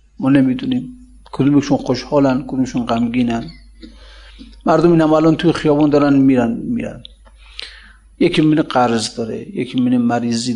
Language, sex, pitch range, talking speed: Persian, male, 125-155 Hz, 120 wpm